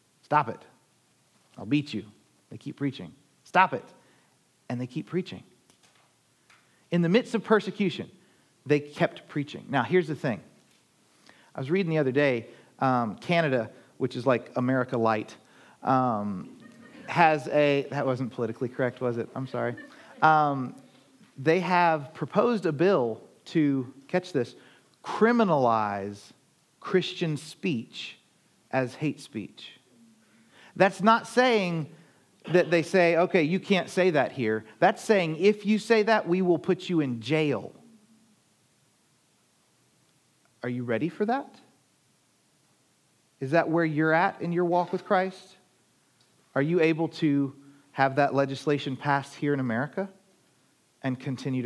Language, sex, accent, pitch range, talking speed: English, male, American, 130-180 Hz, 135 wpm